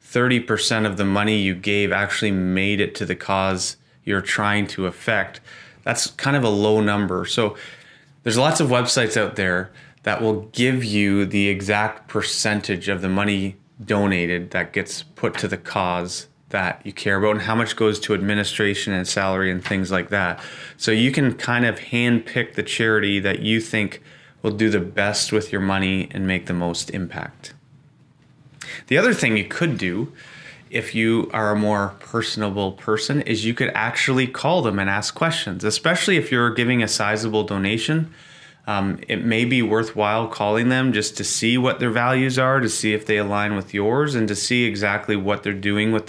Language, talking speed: English, 185 wpm